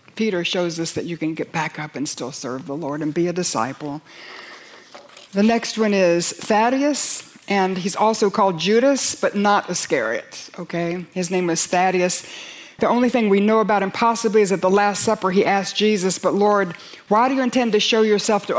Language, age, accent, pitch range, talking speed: English, 60-79, American, 180-220 Hz, 200 wpm